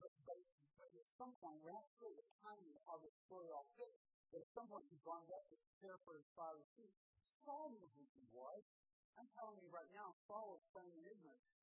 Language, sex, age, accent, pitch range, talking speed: English, male, 50-69, American, 160-230 Hz, 235 wpm